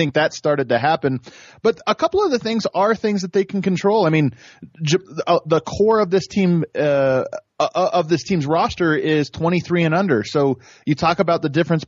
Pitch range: 135-170 Hz